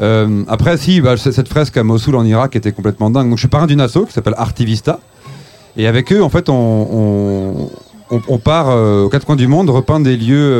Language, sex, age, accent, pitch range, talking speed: French, male, 30-49, French, 115-145 Hz, 225 wpm